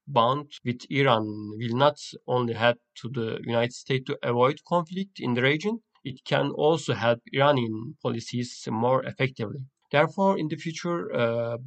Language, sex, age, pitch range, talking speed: Turkish, male, 40-59, 115-145 Hz, 155 wpm